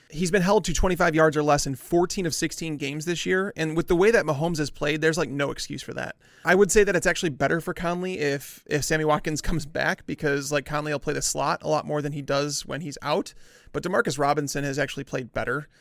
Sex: male